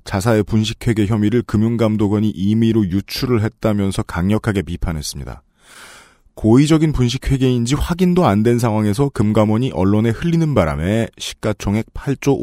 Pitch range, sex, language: 95-135 Hz, male, Korean